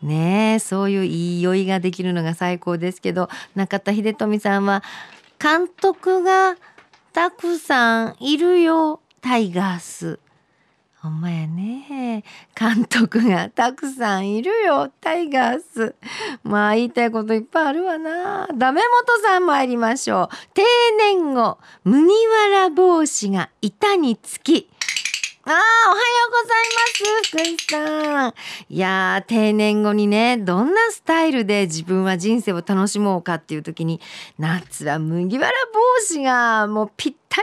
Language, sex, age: Japanese, female, 50-69